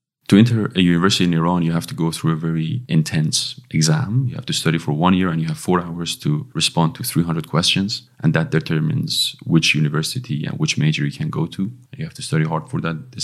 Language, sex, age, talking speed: English, male, 30-49, 235 wpm